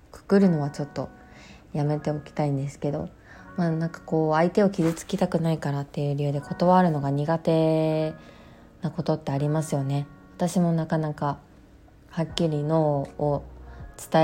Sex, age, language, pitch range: female, 20-39, Japanese, 150-190 Hz